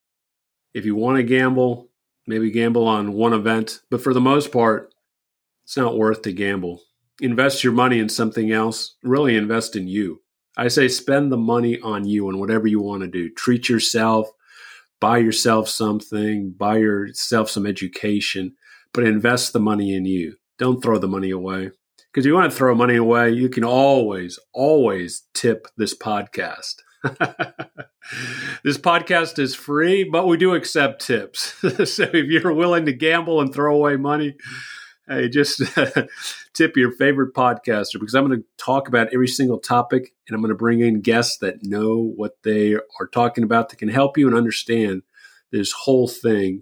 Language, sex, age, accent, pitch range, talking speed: English, male, 40-59, American, 105-130 Hz, 170 wpm